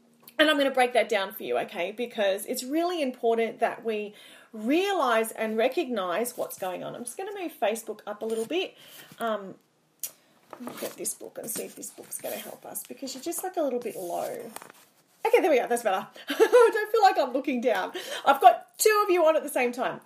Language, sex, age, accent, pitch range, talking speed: English, female, 30-49, Australian, 245-360 Hz, 235 wpm